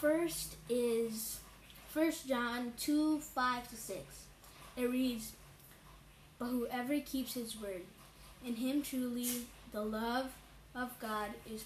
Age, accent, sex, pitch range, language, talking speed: 10-29, American, female, 215-260 Hz, English, 120 wpm